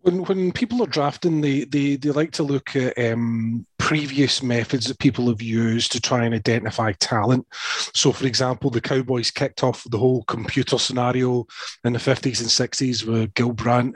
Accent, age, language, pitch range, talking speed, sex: British, 30-49, English, 125-145 Hz, 185 wpm, male